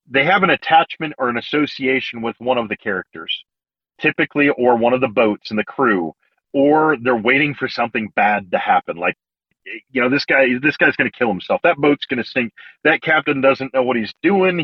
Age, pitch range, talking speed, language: 40-59, 125-160 Hz, 215 wpm, English